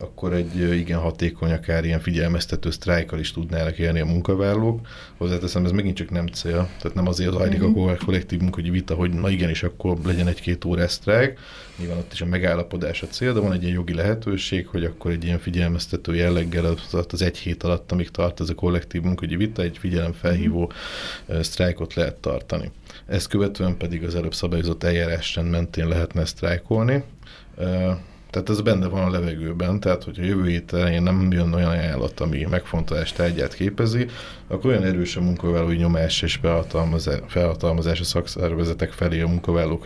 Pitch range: 85-95 Hz